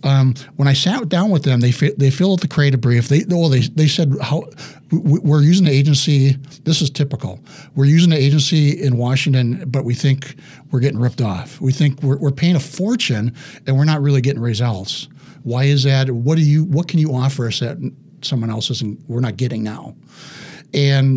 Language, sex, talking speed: English, male, 210 wpm